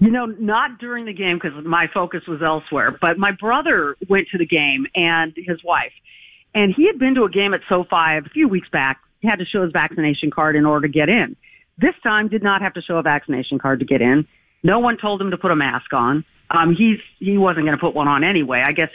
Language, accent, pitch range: English, American, 165-240 Hz